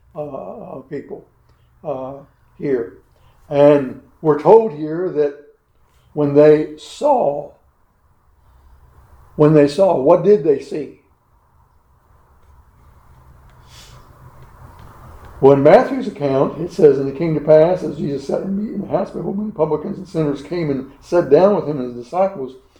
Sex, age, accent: male, 60-79, American